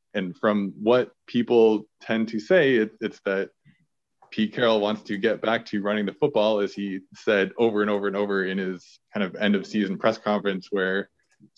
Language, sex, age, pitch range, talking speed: English, male, 20-39, 100-120 Hz, 200 wpm